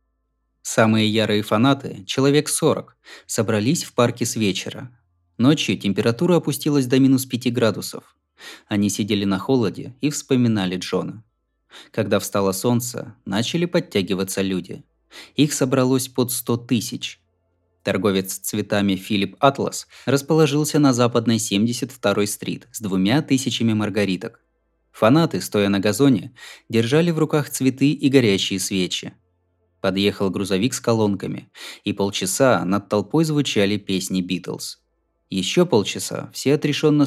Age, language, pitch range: 20-39, Russian, 95-130 Hz